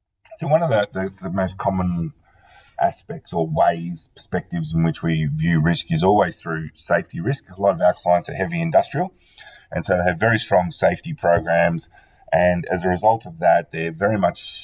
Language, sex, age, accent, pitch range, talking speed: English, male, 30-49, Australian, 85-120 Hz, 190 wpm